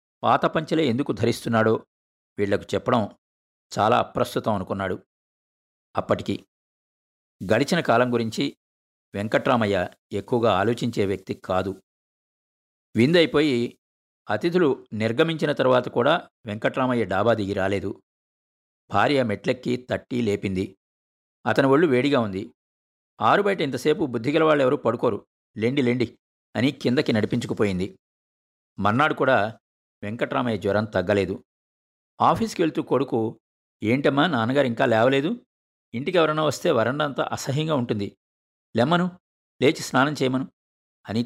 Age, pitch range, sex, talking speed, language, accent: 50-69, 95-130 Hz, male, 100 wpm, Telugu, native